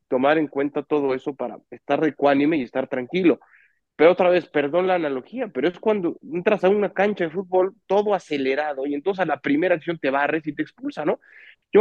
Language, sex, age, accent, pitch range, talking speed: Spanish, male, 30-49, Mexican, 140-185 Hz, 210 wpm